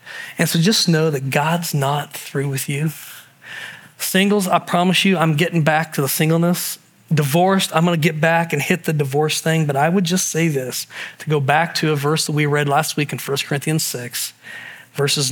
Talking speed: 205 wpm